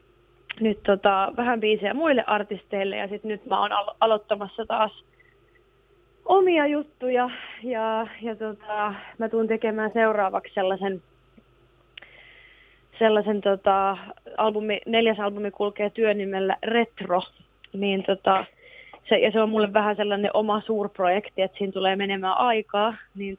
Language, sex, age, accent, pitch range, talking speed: Finnish, female, 20-39, native, 200-230 Hz, 125 wpm